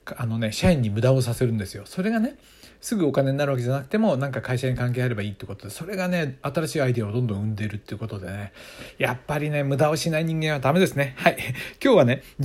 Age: 60-79